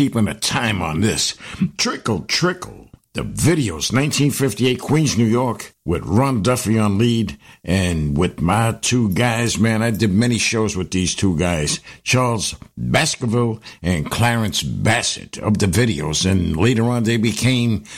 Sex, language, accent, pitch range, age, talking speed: male, English, American, 95-125 Hz, 60-79, 150 wpm